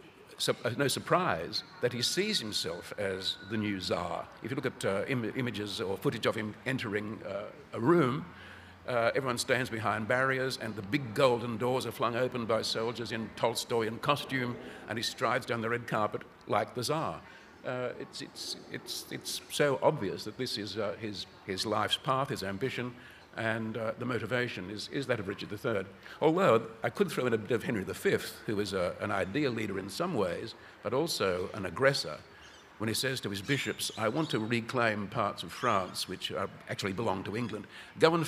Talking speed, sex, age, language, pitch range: 200 wpm, male, 60-79, English, 105-130 Hz